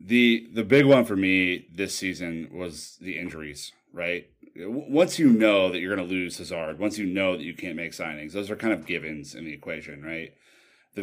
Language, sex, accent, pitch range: English, male, American, 85-105 Hz